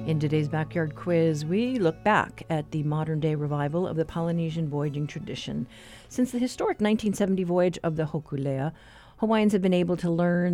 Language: English